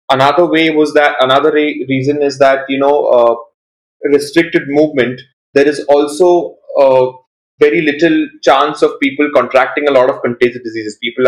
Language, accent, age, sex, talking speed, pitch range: English, Indian, 20-39, male, 160 wpm, 120-150 Hz